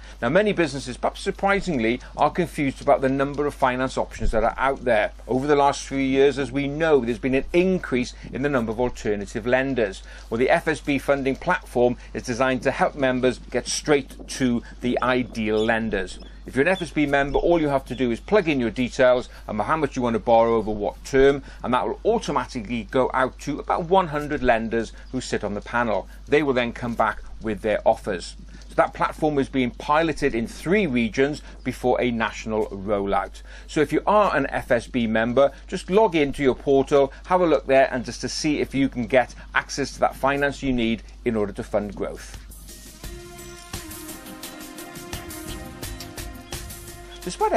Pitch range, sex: 115-145 Hz, male